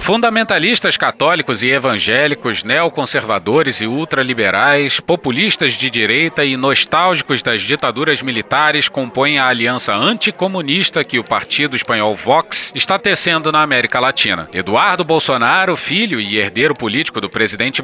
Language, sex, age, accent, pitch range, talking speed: Portuguese, male, 40-59, Brazilian, 130-190 Hz, 125 wpm